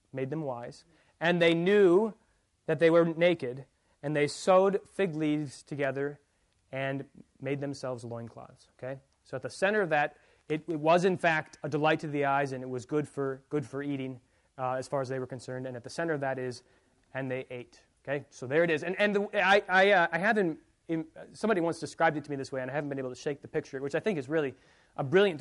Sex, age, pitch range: male, 30-49, 130-170 Hz